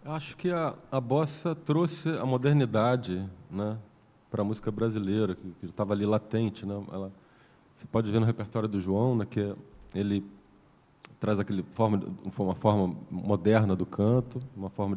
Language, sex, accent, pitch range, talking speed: Portuguese, male, Brazilian, 100-130 Hz, 155 wpm